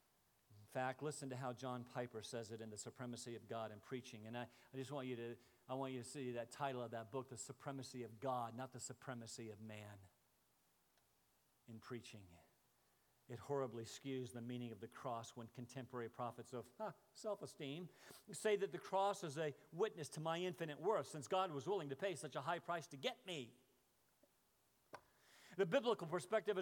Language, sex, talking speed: English, male, 190 wpm